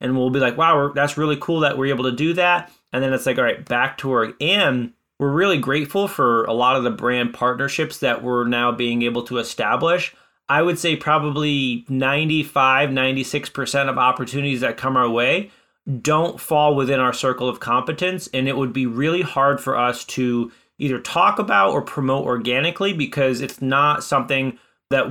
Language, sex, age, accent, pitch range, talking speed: English, male, 30-49, American, 125-155 Hz, 190 wpm